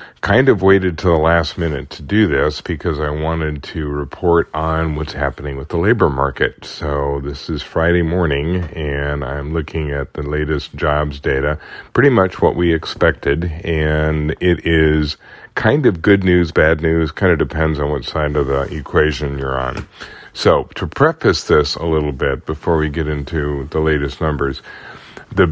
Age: 40-59